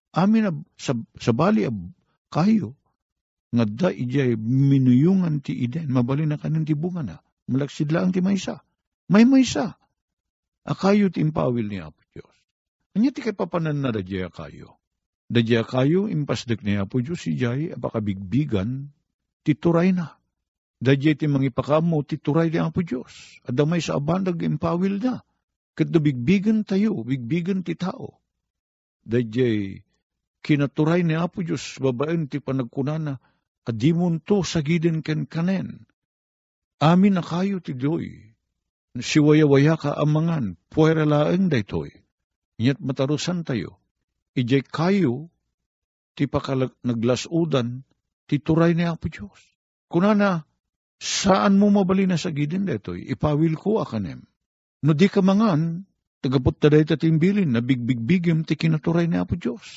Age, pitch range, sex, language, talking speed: 50-69, 120-170 Hz, male, Filipino, 130 wpm